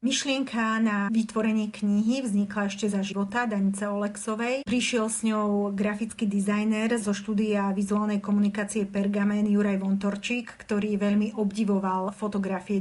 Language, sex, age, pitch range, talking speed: Slovak, female, 40-59, 200-220 Hz, 120 wpm